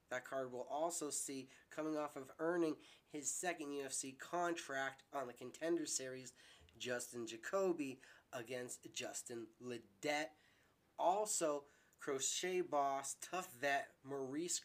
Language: English